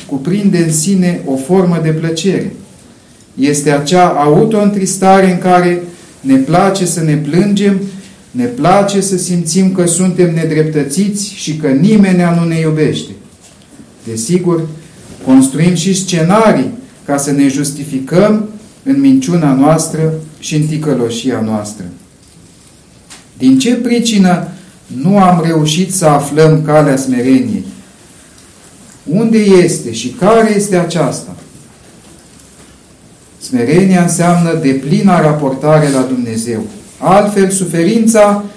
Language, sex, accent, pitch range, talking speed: Romanian, male, native, 145-190 Hz, 110 wpm